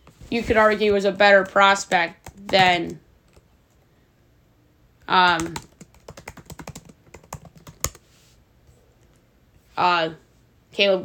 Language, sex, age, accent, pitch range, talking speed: English, female, 20-39, American, 165-210 Hz, 60 wpm